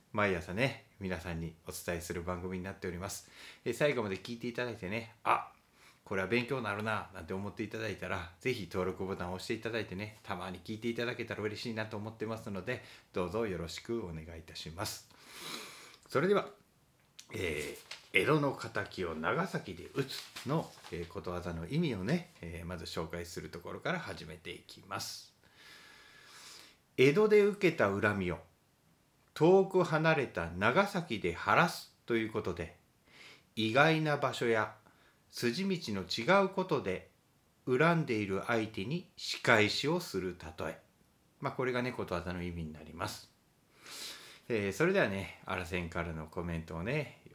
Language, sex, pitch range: Japanese, male, 90-130 Hz